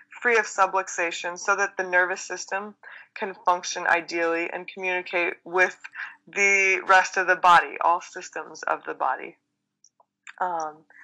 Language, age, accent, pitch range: English, 20-39, American, 175-200 Hz